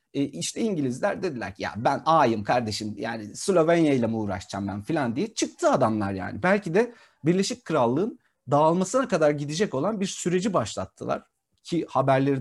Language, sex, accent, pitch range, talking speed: Turkish, male, native, 120-170 Hz, 150 wpm